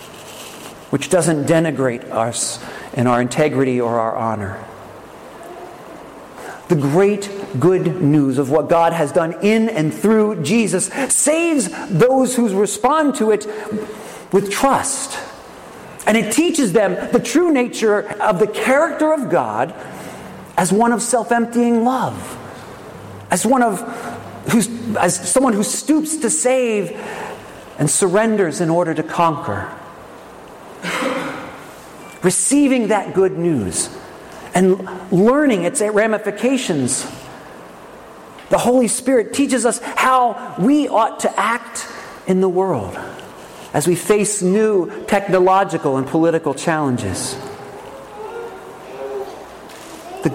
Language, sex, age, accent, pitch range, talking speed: English, male, 40-59, American, 160-230 Hz, 110 wpm